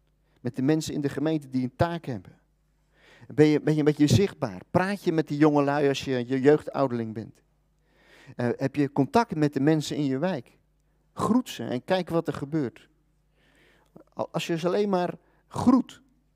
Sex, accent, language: male, Dutch, Dutch